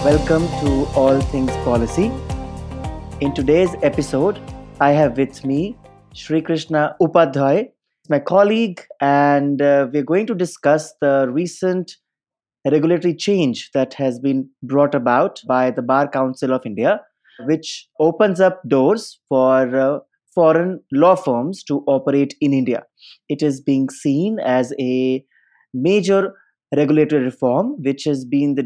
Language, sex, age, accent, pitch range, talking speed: English, male, 30-49, Indian, 135-160 Hz, 130 wpm